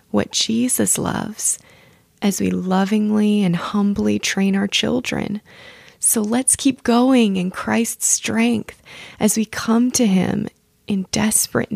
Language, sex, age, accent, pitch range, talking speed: English, female, 20-39, American, 195-235 Hz, 130 wpm